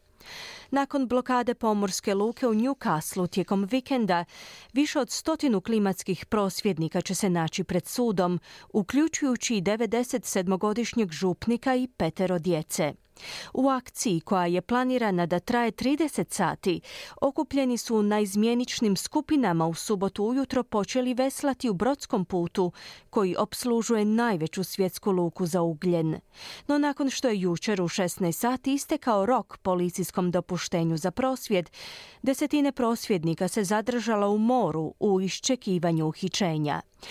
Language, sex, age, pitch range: Croatian, female, 40-59, 180-250 Hz